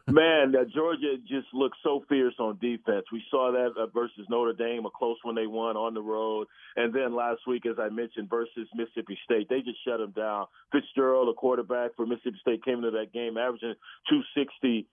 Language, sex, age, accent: English, male, 40-59, American